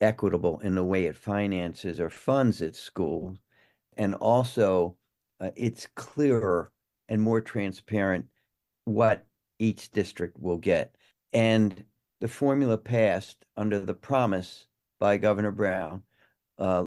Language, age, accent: English, 50-69, American